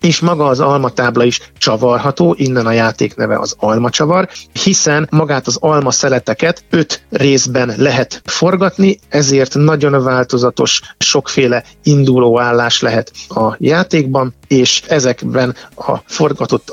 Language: Hungarian